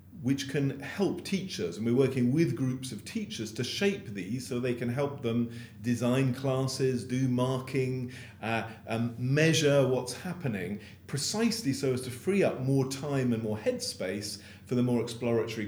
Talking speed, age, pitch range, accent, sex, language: 165 wpm, 40-59, 110-135 Hz, British, male, English